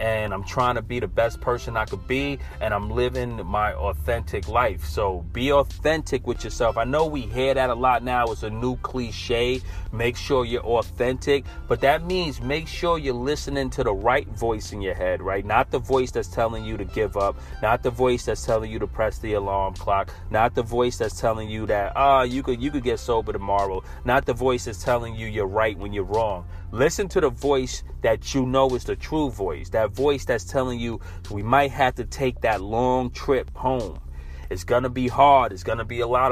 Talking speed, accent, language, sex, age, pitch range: 220 wpm, American, English, male, 30-49, 105-135 Hz